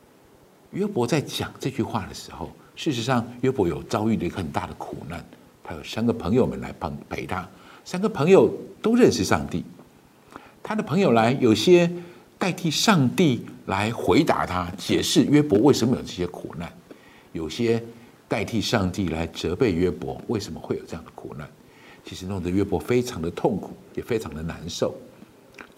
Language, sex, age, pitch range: Chinese, male, 60-79, 85-120 Hz